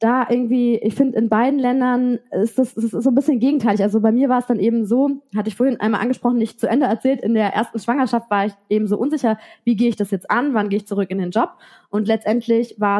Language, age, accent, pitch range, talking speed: German, 20-39, German, 195-245 Hz, 260 wpm